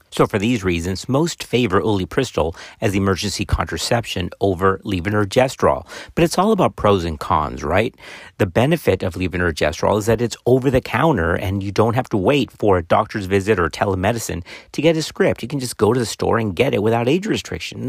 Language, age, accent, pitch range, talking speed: English, 40-59, American, 90-130 Hz, 195 wpm